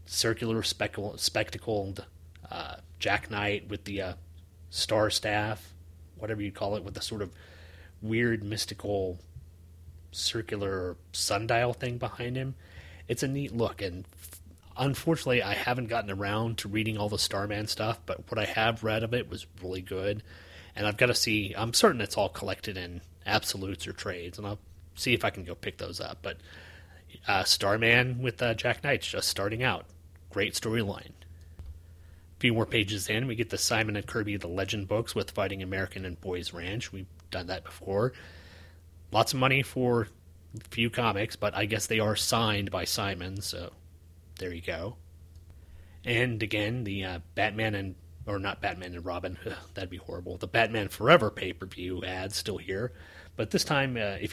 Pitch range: 85-110 Hz